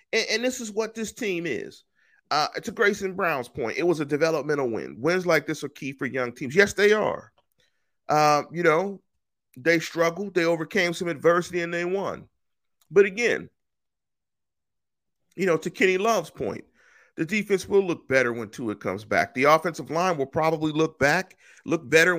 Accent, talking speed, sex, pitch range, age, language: American, 180 wpm, male, 125-185 Hz, 40-59, English